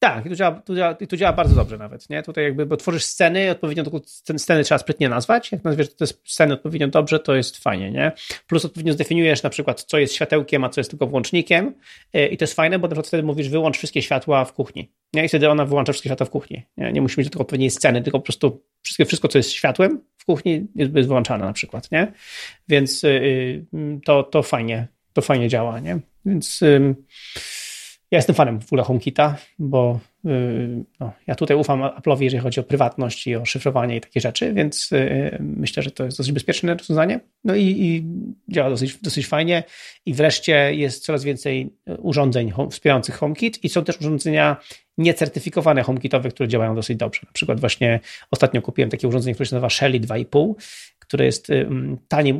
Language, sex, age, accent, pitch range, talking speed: Polish, male, 30-49, native, 130-160 Hz, 195 wpm